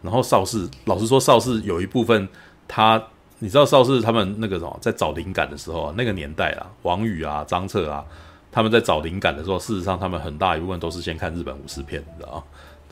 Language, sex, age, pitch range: Chinese, male, 30-49, 85-110 Hz